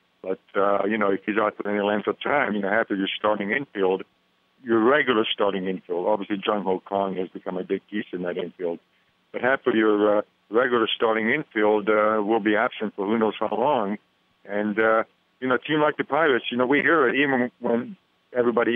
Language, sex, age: English, male, 50-69